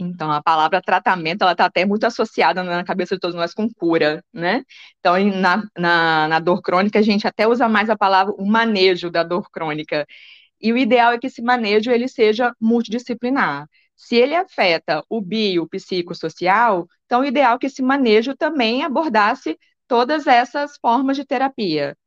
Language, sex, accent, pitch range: Portuguese, female, Brazilian, 185-250 Hz